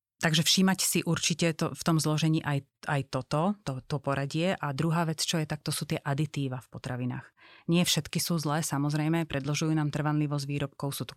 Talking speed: 195 wpm